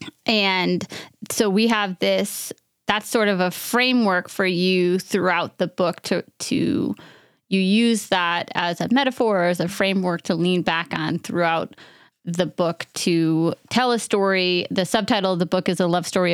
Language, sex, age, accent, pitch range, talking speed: English, female, 20-39, American, 175-210 Hz, 175 wpm